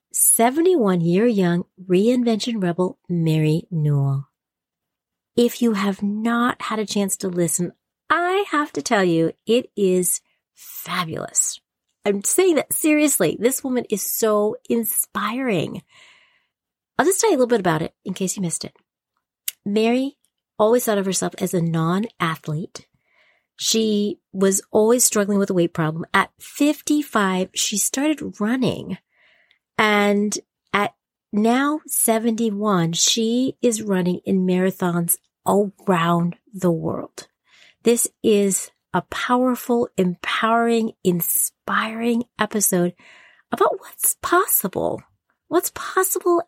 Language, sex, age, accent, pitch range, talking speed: English, female, 40-59, American, 190-245 Hz, 115 wpm